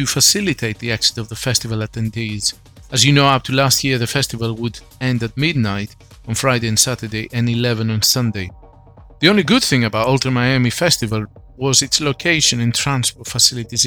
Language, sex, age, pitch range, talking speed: English, male, 40-59, 110-135 Hz, 180 wpm